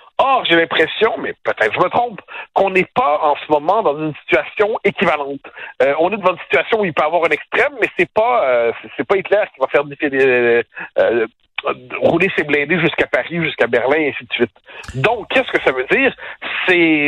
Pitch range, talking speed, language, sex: 150-210 Hz, 220 wpm, French, male